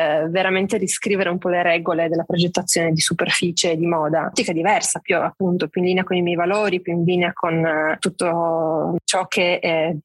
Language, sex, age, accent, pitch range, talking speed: Italian, female, 20-39, native, 175-200 Hz, 185 wpm